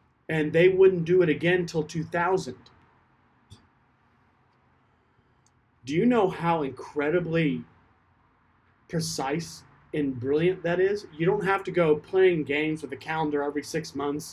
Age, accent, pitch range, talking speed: 40-59, American, 120-155 Hz, 130 wpm